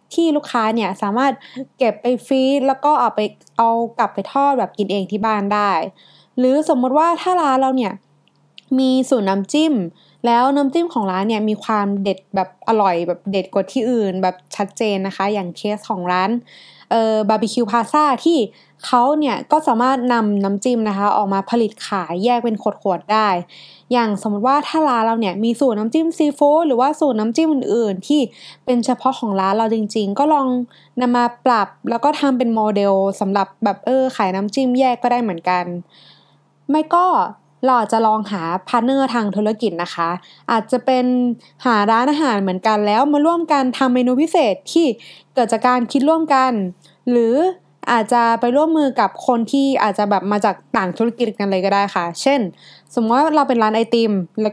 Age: 20-39